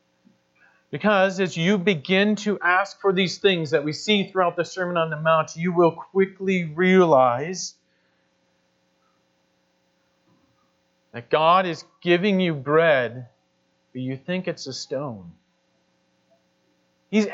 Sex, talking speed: male, 120 wpm